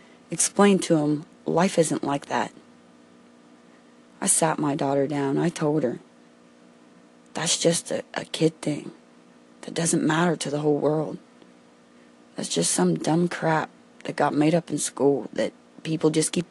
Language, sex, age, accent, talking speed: English, female, 30-49, American, 155 wpm